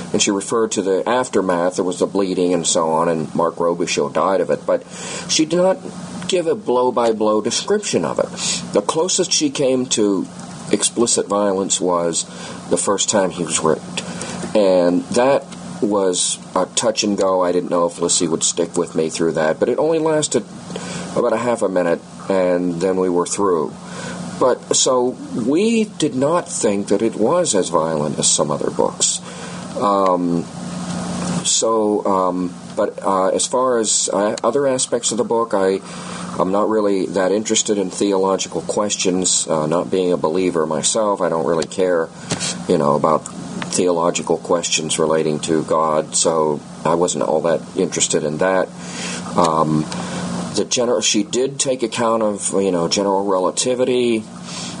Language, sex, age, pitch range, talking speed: English, male, 40-59, 85-120 Hz, 165 wpm